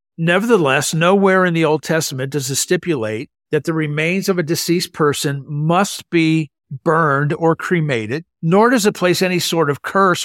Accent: American